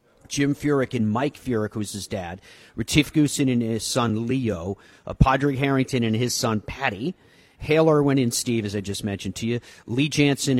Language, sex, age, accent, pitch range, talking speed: English, male, 40-59, American, 105-130 Hz, 185 wpm